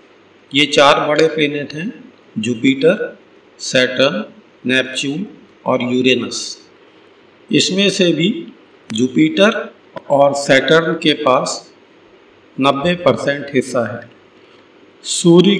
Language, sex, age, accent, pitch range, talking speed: Hindi, male, 50-69, native, 135-175 Hz, 90 wpm